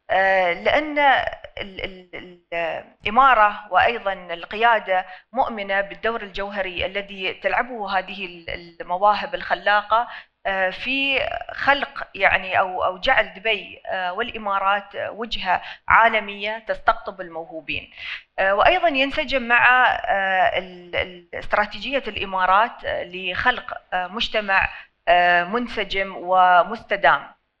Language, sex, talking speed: Arabic, female, 70 wpm